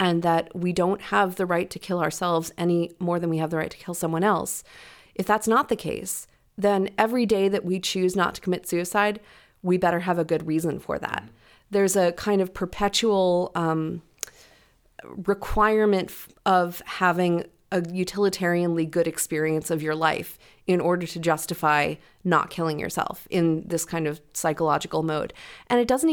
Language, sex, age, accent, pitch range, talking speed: English, female, 30-49, American, 165-195 Hz, 175 wpm